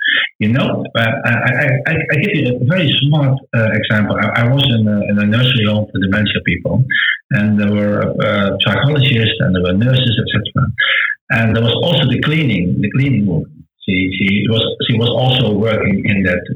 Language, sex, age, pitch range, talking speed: English, male, 50-69, 105-140 Hz, 200 wpm